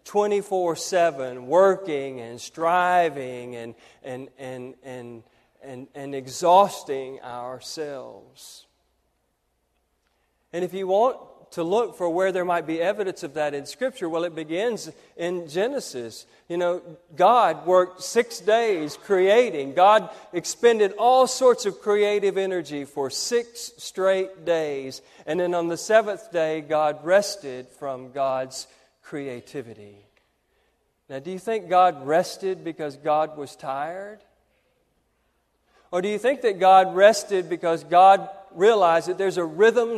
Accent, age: American, 40-59